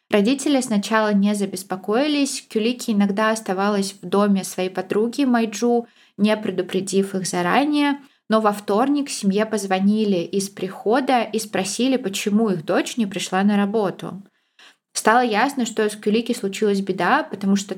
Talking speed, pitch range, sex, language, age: 140 wpm, 190-225 Hz, female, Russian, 20-39